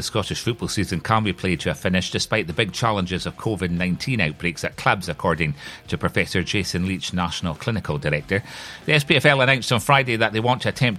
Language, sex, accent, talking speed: English, male, British, 200 wpm